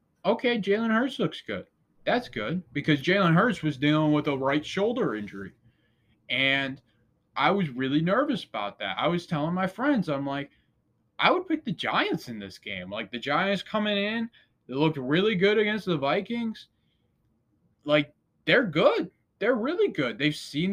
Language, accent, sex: English, American, male